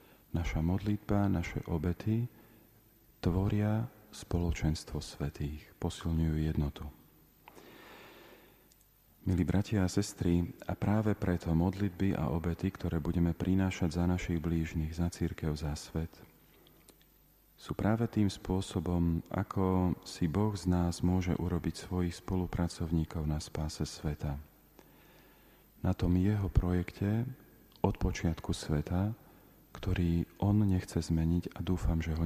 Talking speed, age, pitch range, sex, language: 110 wpm, 40-59, 80-95 Hz, male, Slovak